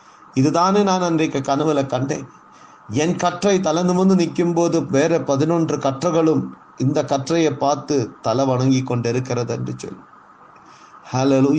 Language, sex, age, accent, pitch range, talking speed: Tamil, male, 50-69, native, 120-160 Hz, 105 wpm